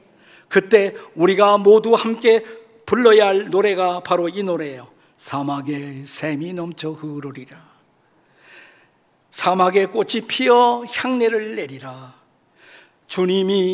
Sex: male